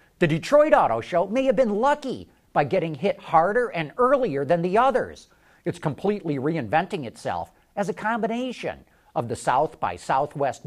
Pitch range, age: 155-215 Hz, 50-69